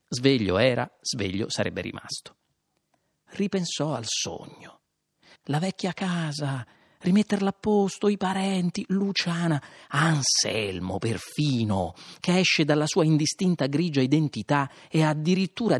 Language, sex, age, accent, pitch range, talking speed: Italian, male, 40-59, native, 130-175 Hz, 105 wpm